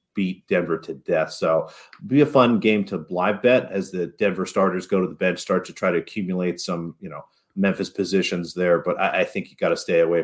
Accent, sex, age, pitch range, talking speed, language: American, male, 30-49, 90-110 Hz, 235 wpm, English